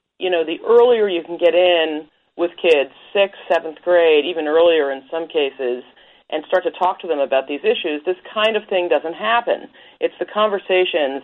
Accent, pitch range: American, 155-185 Hz